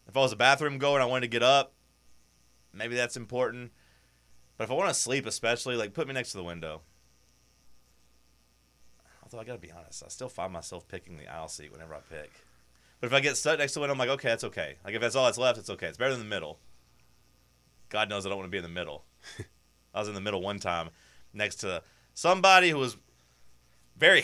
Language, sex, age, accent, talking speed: English, male, 30-49, American, 235 wpm